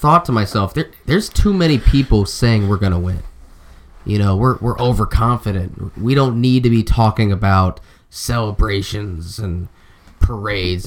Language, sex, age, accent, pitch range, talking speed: English, male, 20-39, American, 90-110 Hz, 150 wpm